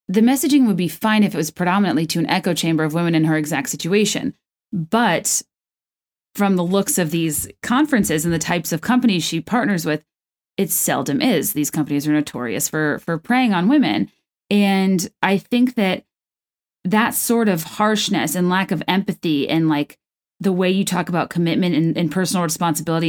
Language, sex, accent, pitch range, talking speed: English, female, American, 165-205 Hz, 180 wpm